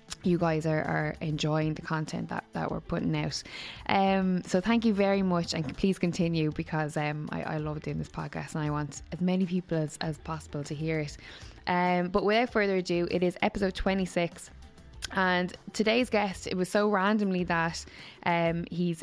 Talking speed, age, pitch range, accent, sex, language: 190 wpm, 10-29, 160-195 Hz, Irish, female, English